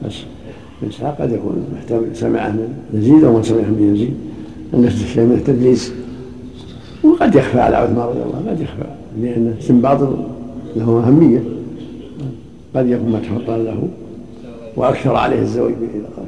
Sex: male